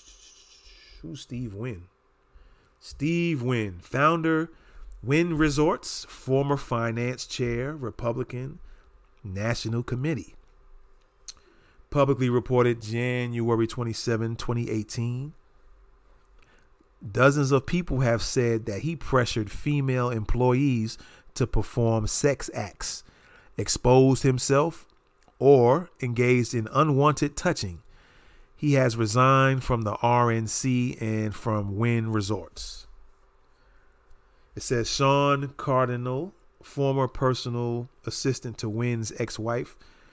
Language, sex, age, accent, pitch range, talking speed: English, male, 40-59, American, 110-130 Hz, 90 wpm